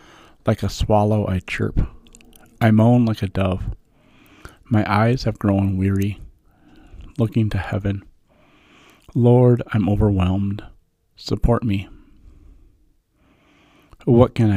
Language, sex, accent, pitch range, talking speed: English, male, American, 95-115 Hz, 105 wpm